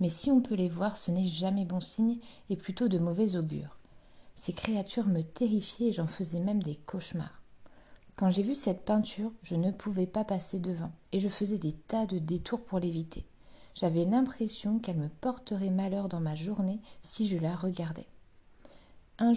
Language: French